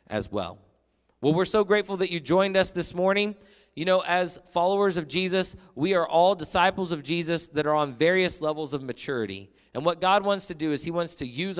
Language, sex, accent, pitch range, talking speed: English, male, American, 115-170 Hz, 215 wpm